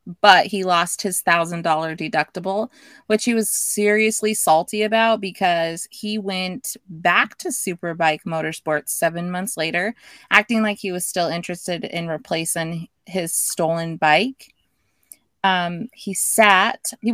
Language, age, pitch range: English, 20-39, 170-220 Hz